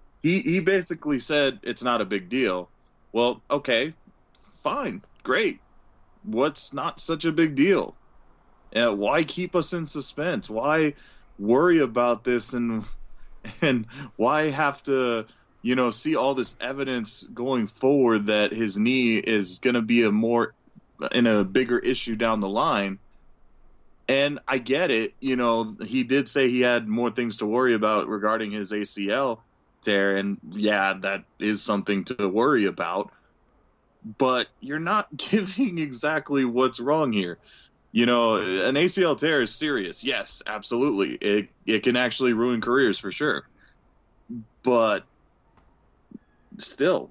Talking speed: 140 wpm